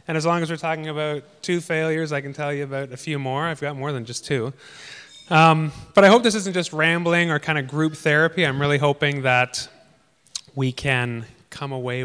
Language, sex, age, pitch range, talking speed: English, male, 30-49, 135-170 Hz, 220 wpm